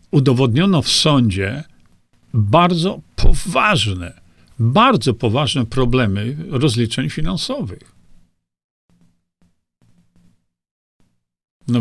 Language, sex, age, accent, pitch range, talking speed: Polish, male, 50-69, native, 115-165 Hz, 55 wpm